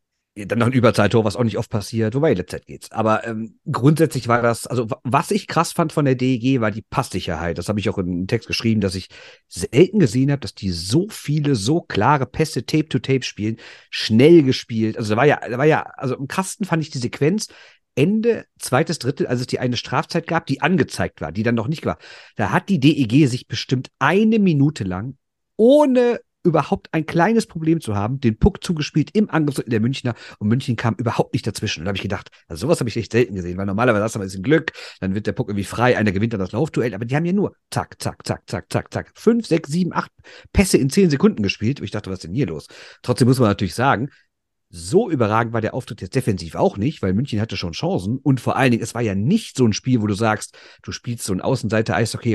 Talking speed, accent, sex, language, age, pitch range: 240 wpm, German, male, German, 50-69, 105-150 Hz